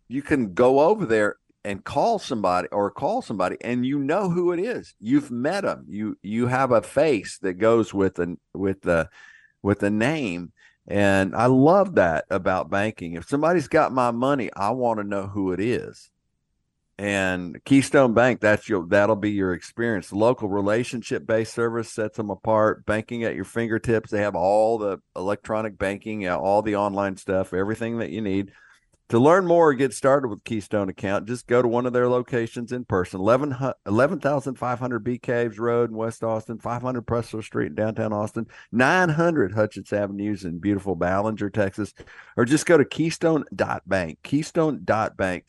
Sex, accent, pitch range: male, American, 100-125 Hz